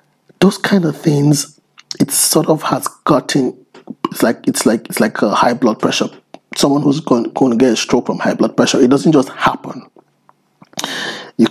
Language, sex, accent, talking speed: English, male, Nigerian, 190 wpm